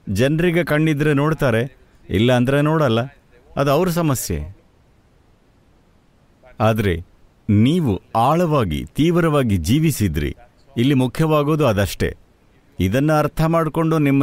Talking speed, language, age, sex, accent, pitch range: 65 wpm, English, 50-69, male, Indian, 110-170 Hz